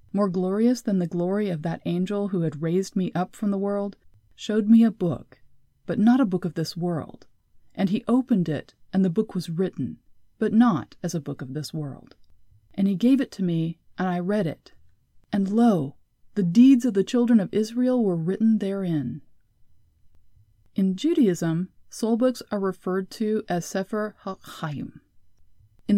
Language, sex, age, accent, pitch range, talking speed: English, female, 30-49, American, 155-210 Hz, 180 wpm